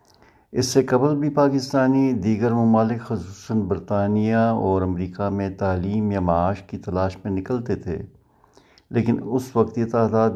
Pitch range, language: 95-115 Hz, Urdu